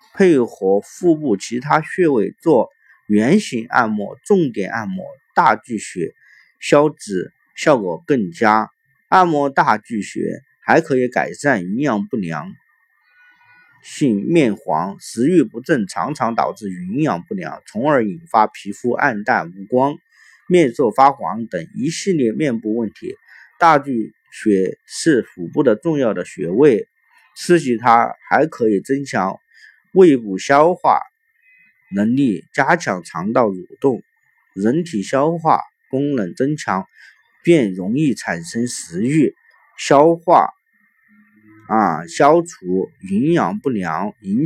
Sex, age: male, 50-69